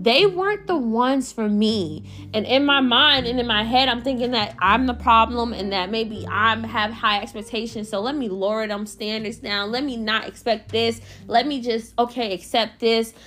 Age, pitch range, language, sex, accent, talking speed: 20-39, 205-250 Hz, English, female, American, 205 wpm